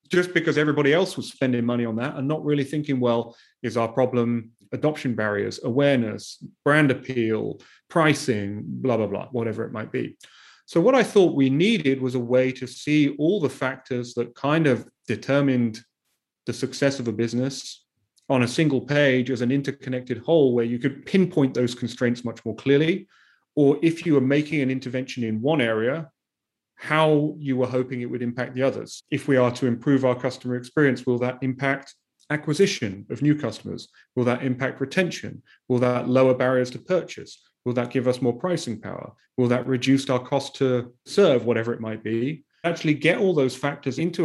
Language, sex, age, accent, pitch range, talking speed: English, male, 30-49, British, 120-145 Hz, 185 wpm